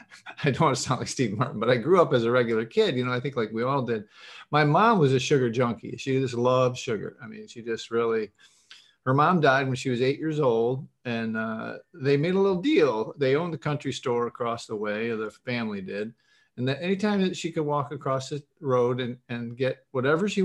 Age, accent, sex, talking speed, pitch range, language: 50-69, American, male, 240 wpm, 115-145 Hz, English